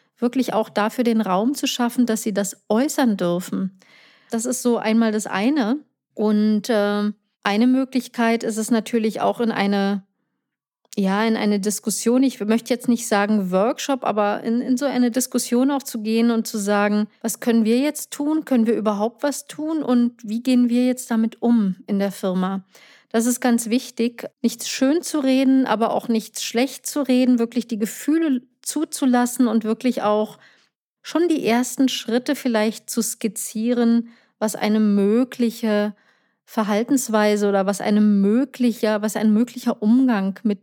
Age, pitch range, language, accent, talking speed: 40-59, 210-250 Hz, English, German, 165 wpm